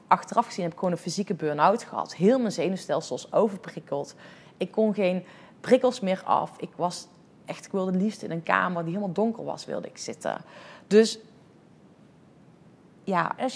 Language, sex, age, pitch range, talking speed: Dutch, female, 30-49, 170-215 Hz, 160 wpm